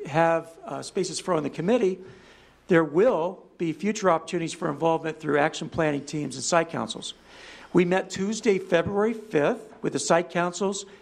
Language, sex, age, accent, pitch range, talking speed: English, male, 60-79, American, 155-185 Hz, 165 wpm